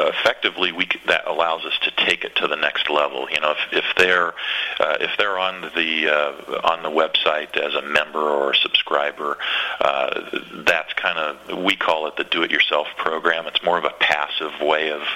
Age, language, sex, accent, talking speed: 40-59, English, male, American, 195 wpm